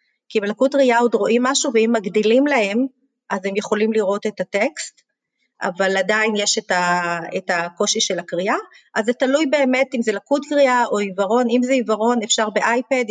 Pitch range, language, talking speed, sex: 205-250 Hz, Hebrew, 175 wpm, female